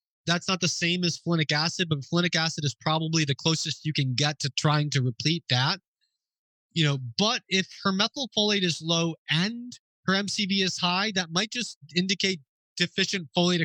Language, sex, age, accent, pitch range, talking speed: English, male, 20-39, American, 155-185 Hz, 180 wpm